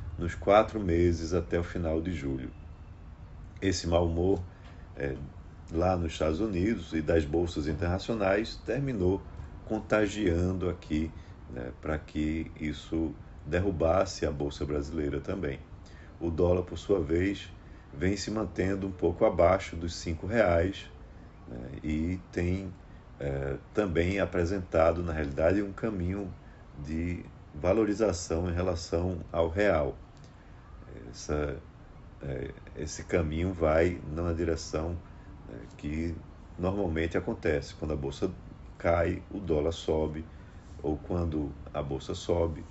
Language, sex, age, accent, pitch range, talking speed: Portuguese, male, 40-59, Brazilian, 80-95 Hz, 115 wpm